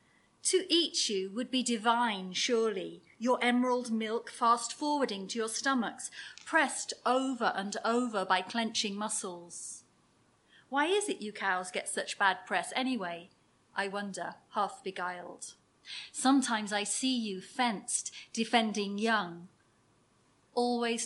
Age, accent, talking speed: 30-49, British, 125 wpm